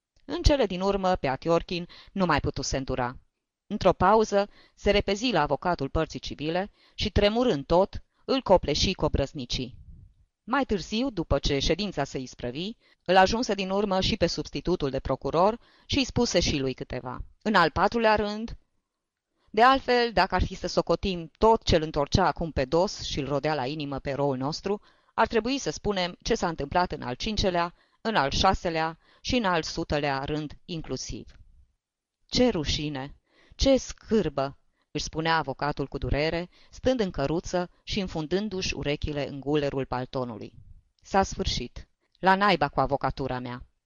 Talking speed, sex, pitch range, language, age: 160 wpm, female, 140-190 Hz, Romanian, 20-39